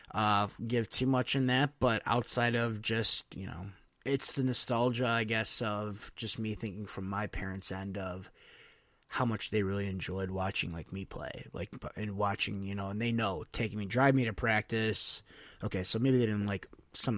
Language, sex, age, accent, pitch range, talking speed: English, male, 20-39, American, 100-125 Hz, 195 wpm